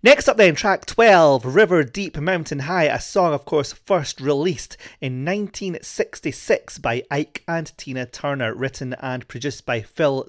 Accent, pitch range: British, 120-145 Hz